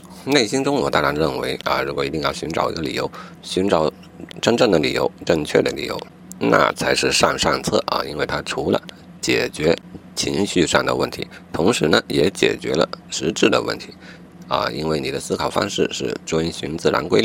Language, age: Chinese, 50-69